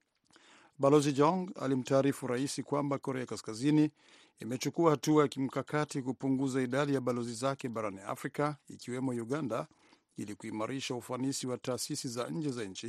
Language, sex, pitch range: Swahili, male, 125-145 Hz